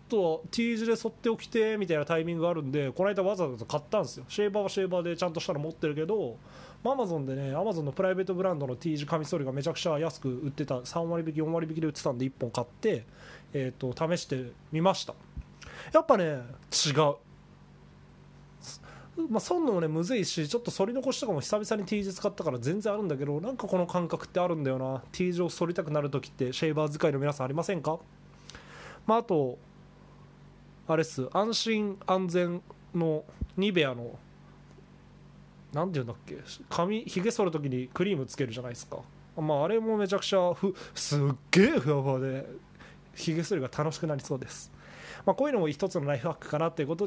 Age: 20-39